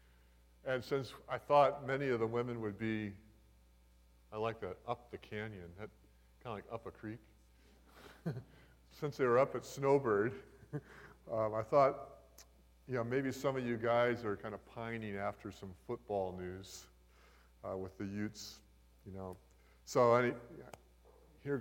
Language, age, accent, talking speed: English, 50-69, American, 150 wpm